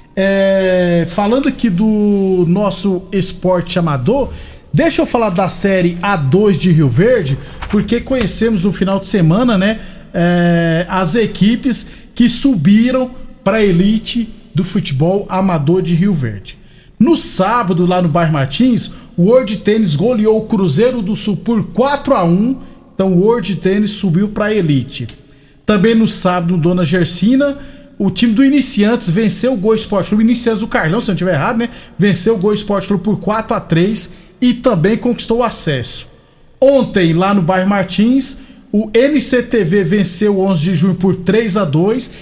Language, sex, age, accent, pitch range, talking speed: Portuguese, male, 50-69, Brazilian, 185-230 Hz, 155 wpm